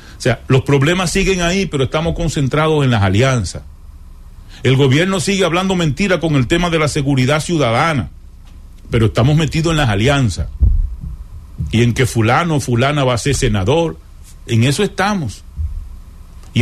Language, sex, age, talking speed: English, male, 40-59, 160 wpm